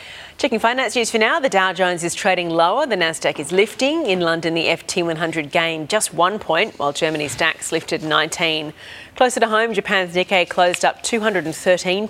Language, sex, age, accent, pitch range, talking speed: English, female, 40-59, Australian, 165-210 Hz, 180 wpm